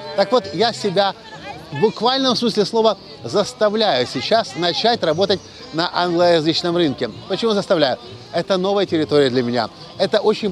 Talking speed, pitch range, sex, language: 135 wpm, 165-220 Hz, male, Russian